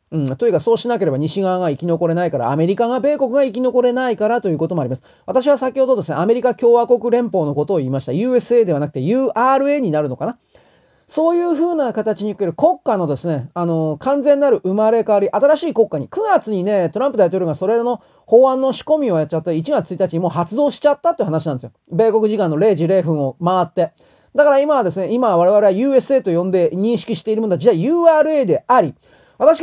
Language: Japanese